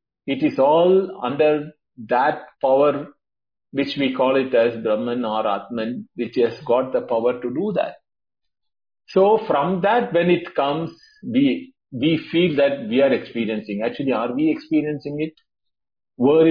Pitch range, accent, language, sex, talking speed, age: 125-170 Hz, Indian, English, male, 150 wpm, 50-69